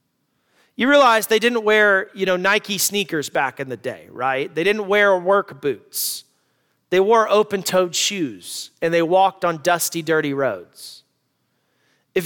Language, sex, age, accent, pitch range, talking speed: English, male, 40-59, American, 185-235 Hz, 150 wpm